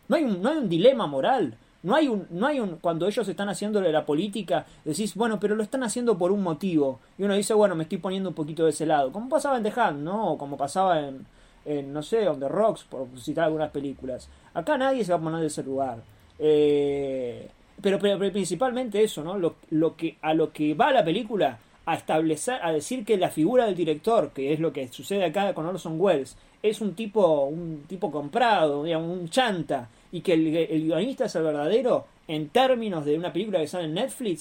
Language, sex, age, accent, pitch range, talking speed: Spanish, male, 30-49, Argentinian, 150-210 Hz, 225 wpm